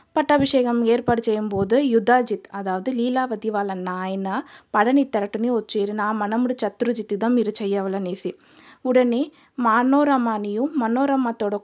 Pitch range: 210-250 Hz